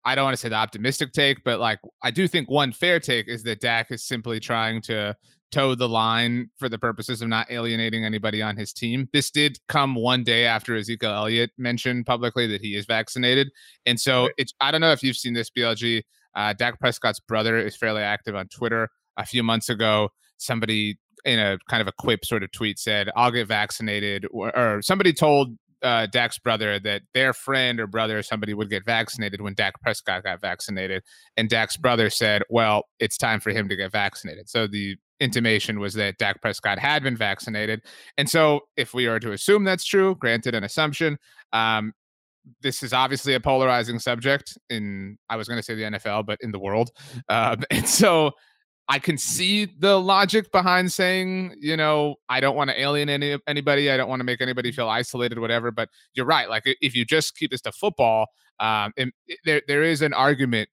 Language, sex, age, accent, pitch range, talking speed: English, male, 30-49, American, 110-135 Hz, 210 wpm